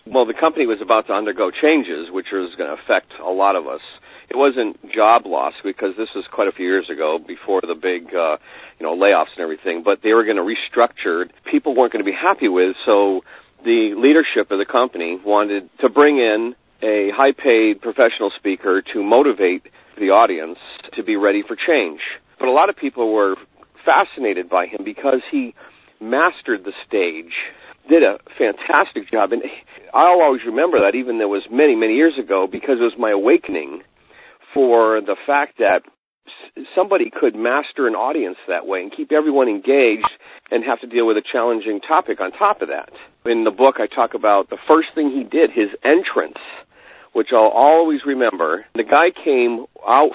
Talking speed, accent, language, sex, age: 190 wpm, American, English, male, 40-59